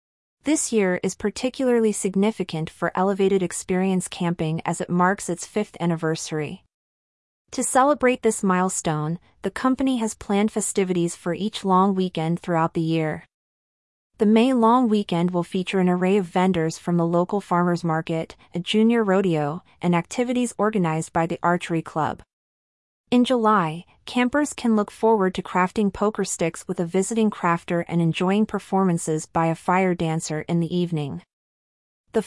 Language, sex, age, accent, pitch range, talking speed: English, female, 30-49, American, 170-210 Hz, 150 wpm